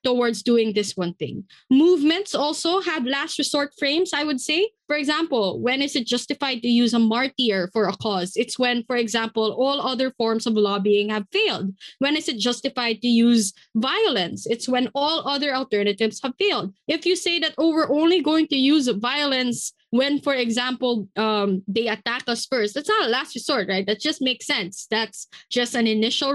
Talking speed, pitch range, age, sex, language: 195 wpm, 215-280 Hz, 20-39, female, English